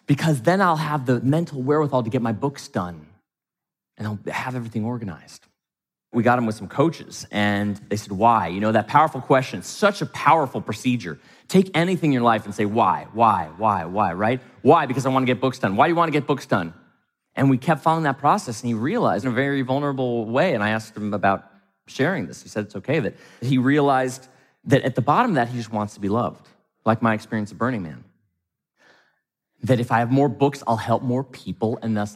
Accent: American